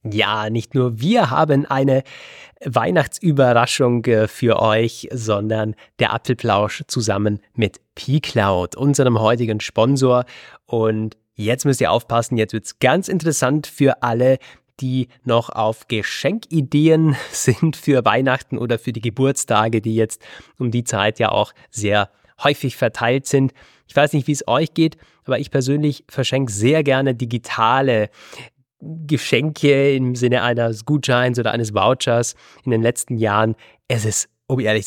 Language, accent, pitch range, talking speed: German, German, 115-135 Hz, 140 wpm